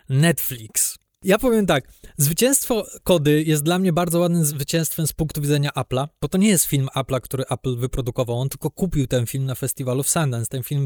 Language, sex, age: Polish, male, 20-39